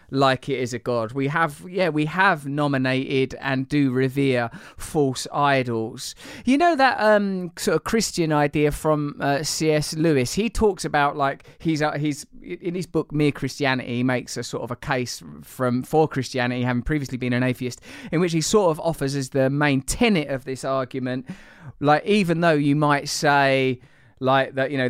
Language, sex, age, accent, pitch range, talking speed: English, male, 20-39, British, 130-160 Hz, 190 wpm